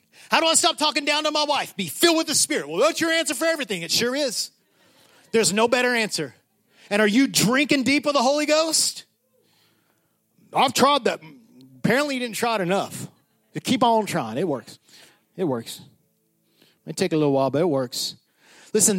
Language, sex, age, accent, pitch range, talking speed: English, male, 30-49, American, 160-230 Hz, 200 wpm